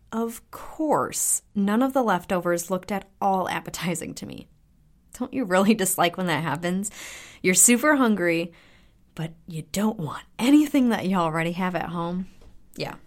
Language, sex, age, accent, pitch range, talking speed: English, female, 30-49, American, 160-210 Hz, 155 wpm